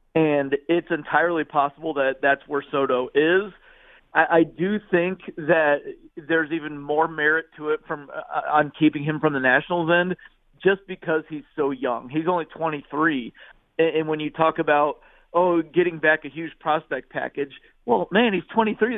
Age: 40-59